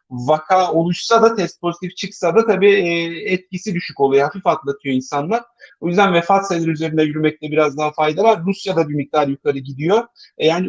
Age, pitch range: 50-69, 155-185 Hz